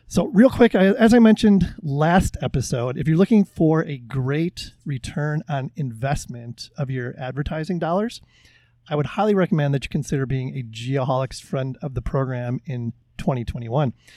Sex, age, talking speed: male, 30-49, 155 wpm